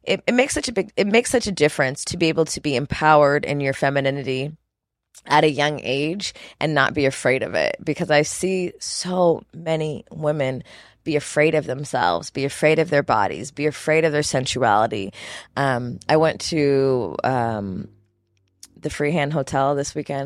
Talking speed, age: 180 wpm, 20-39